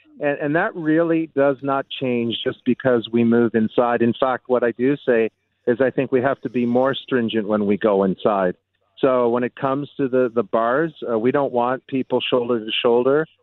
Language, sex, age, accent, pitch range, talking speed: English, male, 50-69, American, 120-155 Hz, 210 wpm